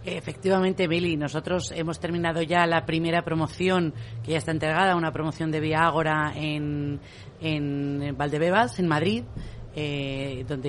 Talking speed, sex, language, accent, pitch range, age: 140 wpm, female, Spanish, Spanish, 145-170 Hz, 30-49